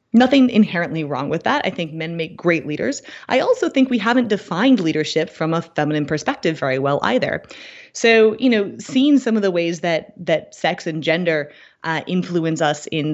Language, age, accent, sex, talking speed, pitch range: English, 20-39, American, female, 190 wpm, 160-230 Hz